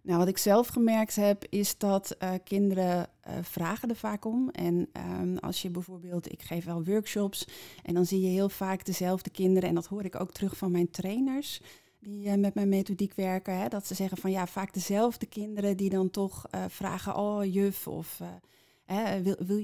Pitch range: 180-205 Hz